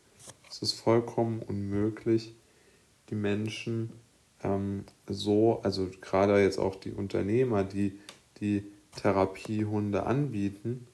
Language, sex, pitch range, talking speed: German, male, 100-115 Hz, 100 wpm